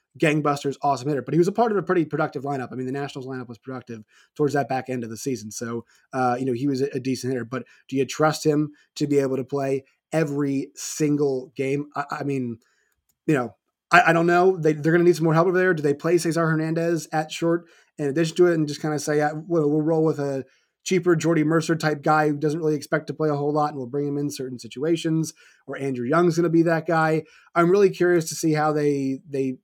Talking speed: 255 wpm